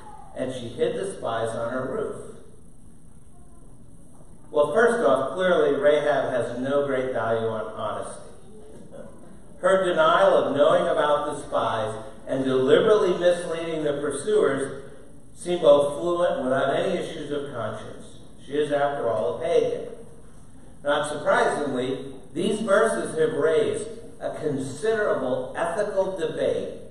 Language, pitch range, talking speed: English, 135-205 Hz, 125 wpm